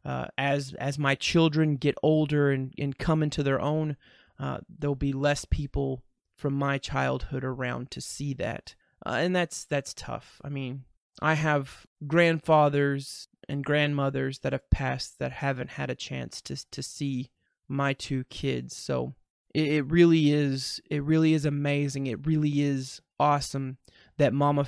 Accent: American